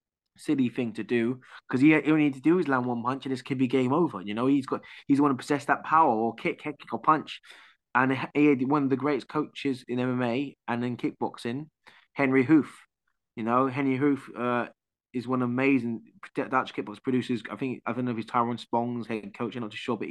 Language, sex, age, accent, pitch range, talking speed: English, male, 20-39, British, 115-130 Hz, 240 wpm